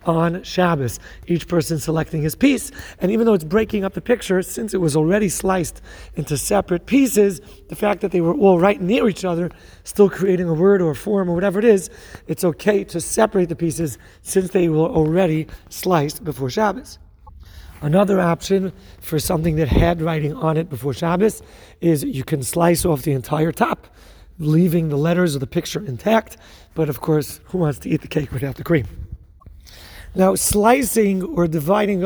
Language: English